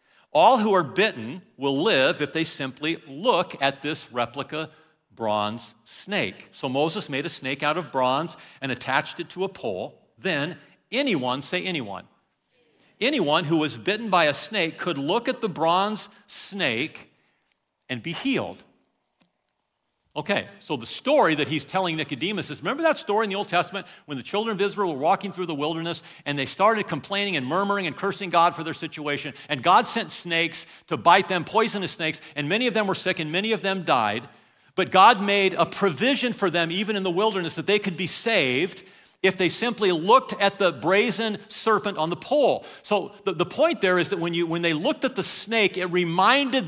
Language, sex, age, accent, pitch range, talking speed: English, male, 50-69, American, 165-210 Hz, 195 wpm